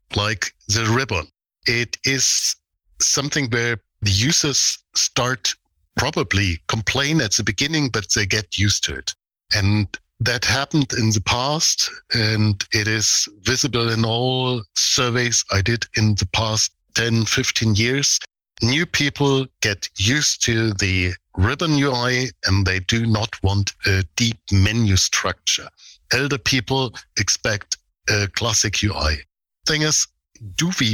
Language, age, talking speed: English, 60-79, 135 wpm